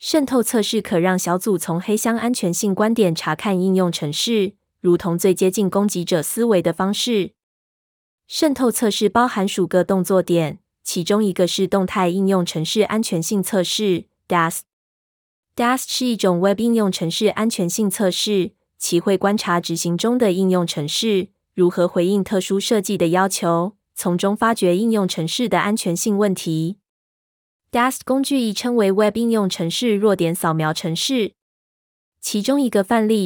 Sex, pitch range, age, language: female, 175-220 Hz, 20-39, Chinese